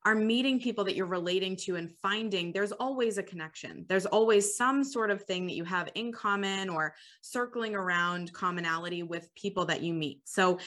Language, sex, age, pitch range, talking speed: English, female, 20-39, 170-205 Hz, 190 wpm